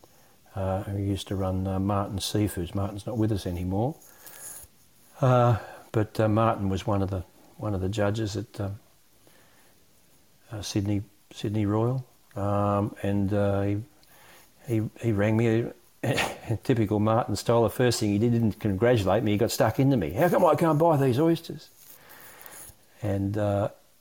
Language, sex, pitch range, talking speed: English, male, 100-120 Hz, 165 wpm